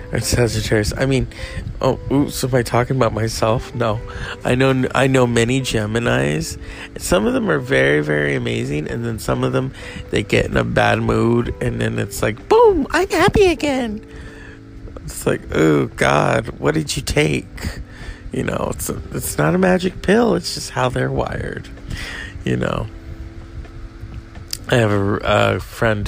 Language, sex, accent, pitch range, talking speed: English, male, American, 95-125 Hz, 170 wpm